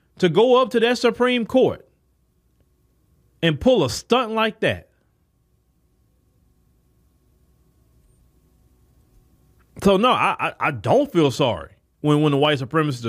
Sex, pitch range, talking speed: male, 170-255 Hz, 120 wpm